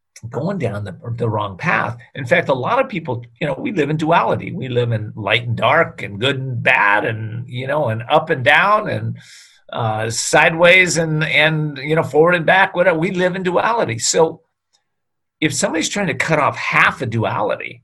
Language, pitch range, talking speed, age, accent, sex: English, 115-155 Hz, 200 wpm, 50-69, American, male